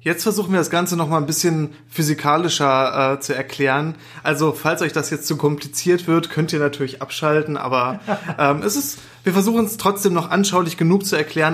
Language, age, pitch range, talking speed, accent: German, 20-39, 145-175 Hz, 200 wpm, German